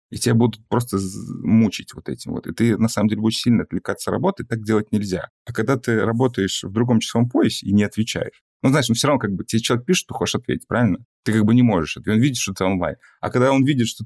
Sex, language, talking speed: male, Russian, 260 wpm